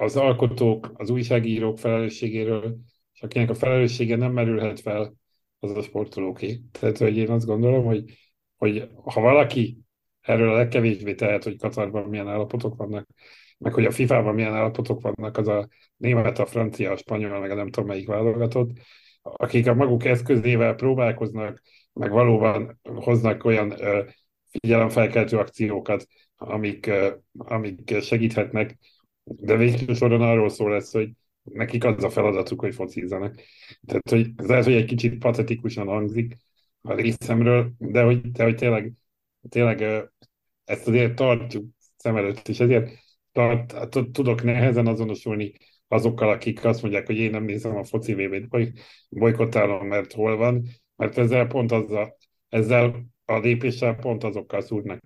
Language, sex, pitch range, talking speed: Hungarian, male, 105-120 Hz, 145 wpm